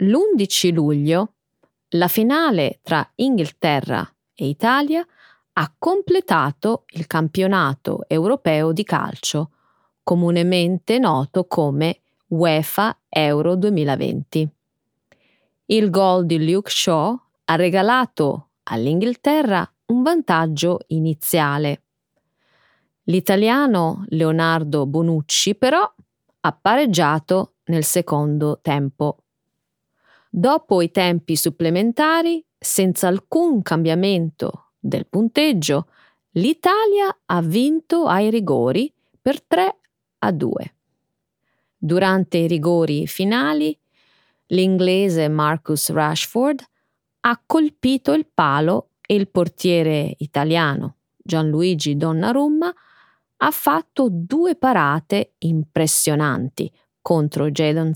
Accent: native